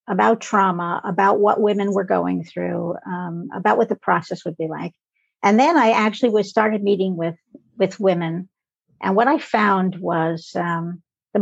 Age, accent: 50-69, American